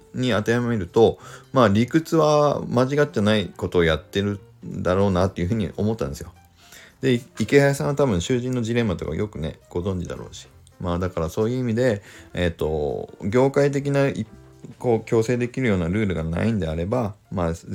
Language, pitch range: Japanese, 85-130 Hz